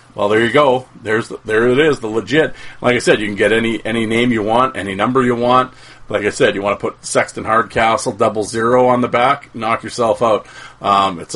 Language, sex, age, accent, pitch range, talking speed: English, male, 40-59, American, 105-125 Hz, 240 wpm